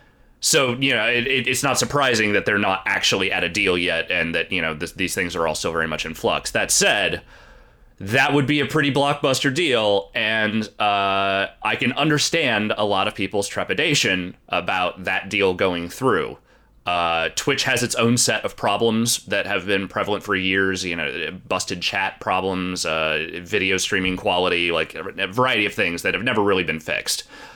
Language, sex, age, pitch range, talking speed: English, male, 30-49, 90-120 Hz, 190 wpm